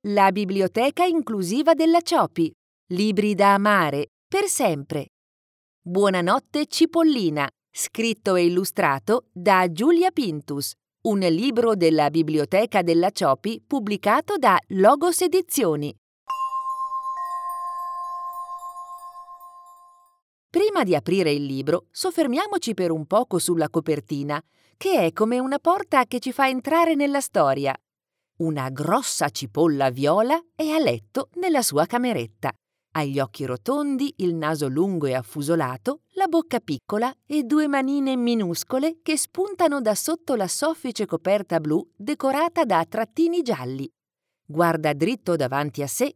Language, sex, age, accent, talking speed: Italian, female, 40-59, native, 120 wpm